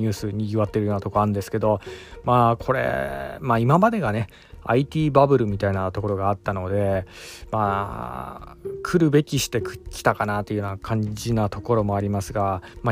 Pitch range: 105-140 Hz